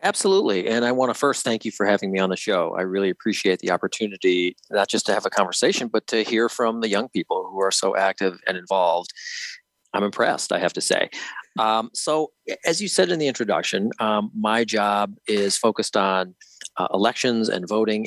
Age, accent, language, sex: 40-59, American, English, male